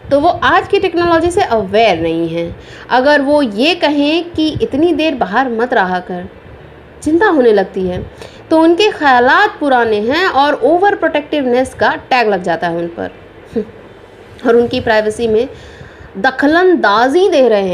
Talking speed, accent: 155 wpm, native